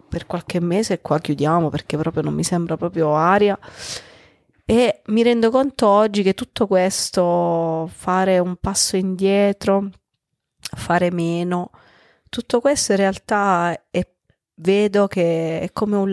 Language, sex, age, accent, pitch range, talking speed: Italian, female, 40-59, native, 175-205 Hz, 140 wpm